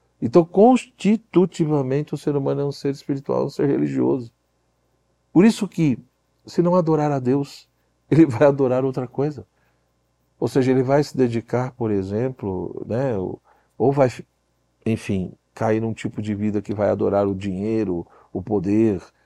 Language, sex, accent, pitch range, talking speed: Portuguese, male, Brazilian, 100-150 Hz, 155 wpm